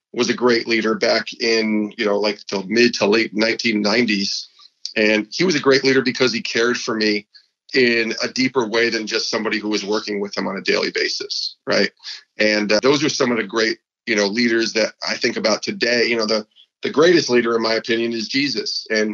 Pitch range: 110-170 Hz